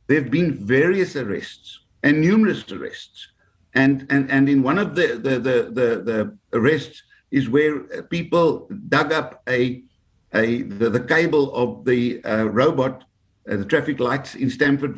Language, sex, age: English, male, 60-79